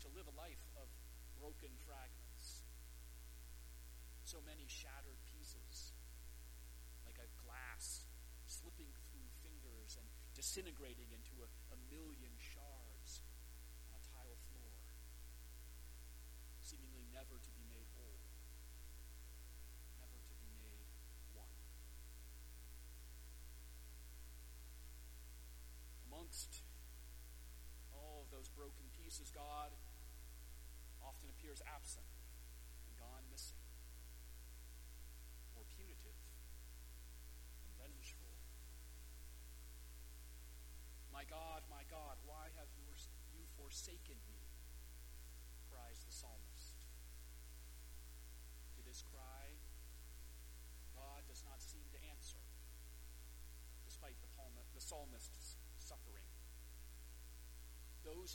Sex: male